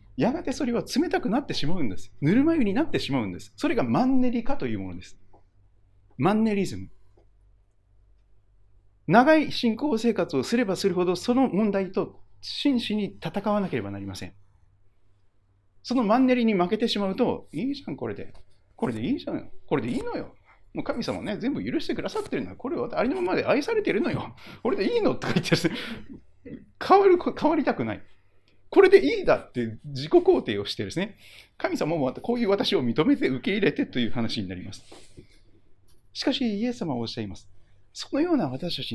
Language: Japanese